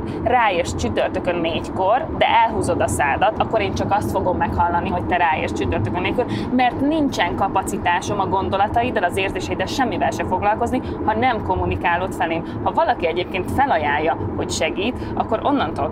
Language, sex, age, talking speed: Hungarian, female, 20-39, 155 wpm